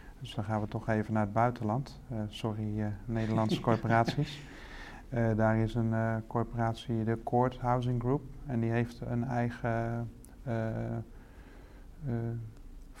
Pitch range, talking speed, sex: 110-125 Hz, 145 wpm, male